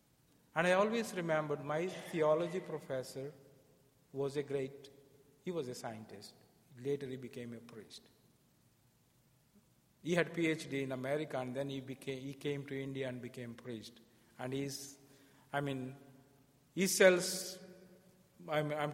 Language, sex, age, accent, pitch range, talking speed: English, male, 50-69, Indian, 130-155 Hz, 135 wpm